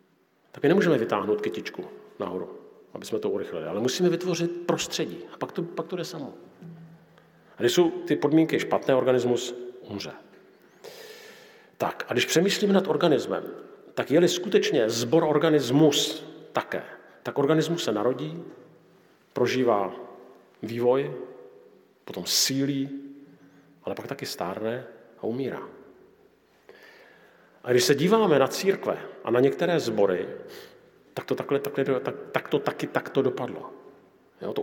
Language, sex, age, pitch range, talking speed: Slovak, male, 50-69, 125-185 Hz, 135 wpm